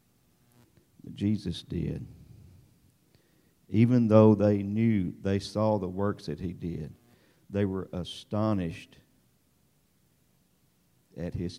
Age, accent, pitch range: 50-69, American, 90-105 Hz